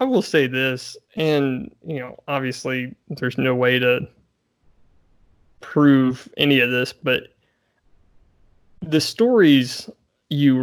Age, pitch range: 20-39, 125-145 Hz